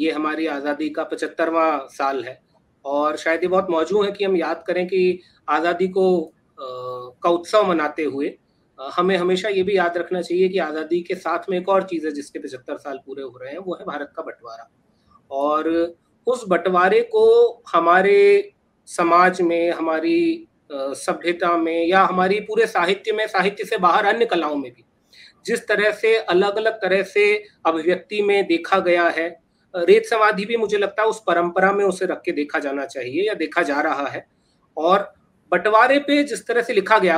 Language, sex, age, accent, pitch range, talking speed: Hindi, male, 30-49, native, 170-210 Hz, 185 wpm